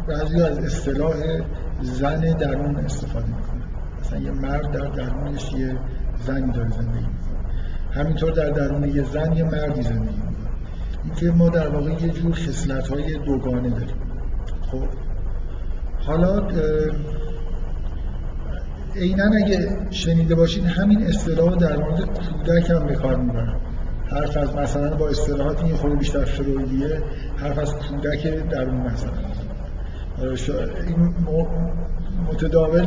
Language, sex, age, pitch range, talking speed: Persian, male, 50-69, 130-165 Hz, 115 wpm